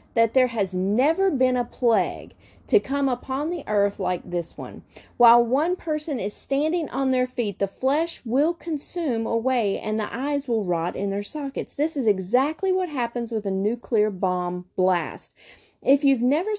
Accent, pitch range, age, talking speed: American, 205-280 Hz, 40-59, 175 wpm